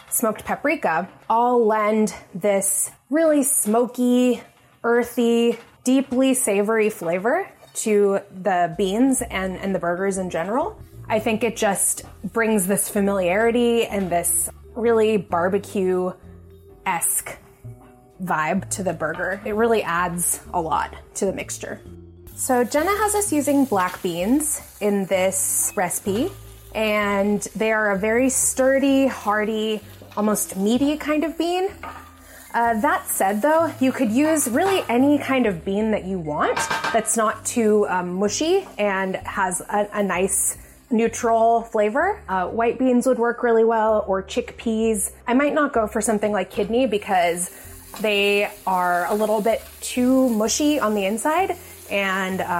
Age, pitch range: 20-39, 190-245 Hz